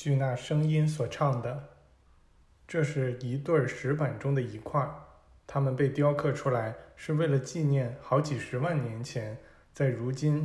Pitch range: 115-145 Hz